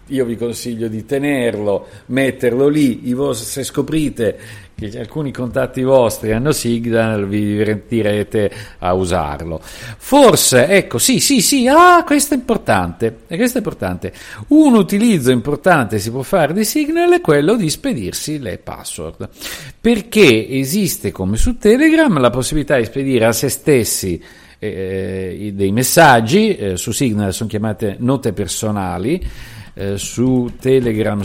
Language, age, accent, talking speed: Italian, 50-69, native, 135 wpm